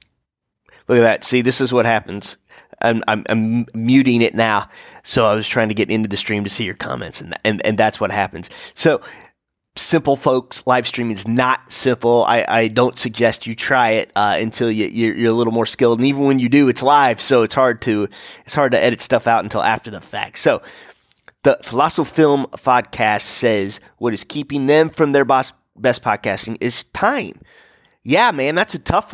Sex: male